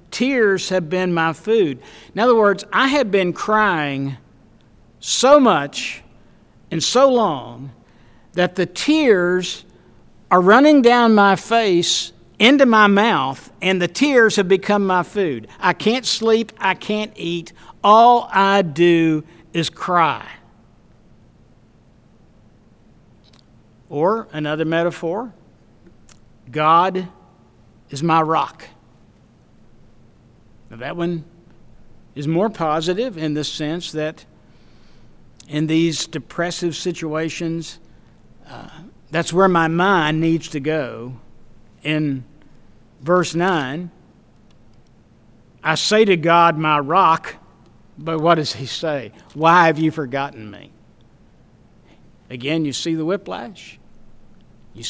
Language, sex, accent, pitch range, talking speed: English, male, American, 135-185 Hz, 110 wpm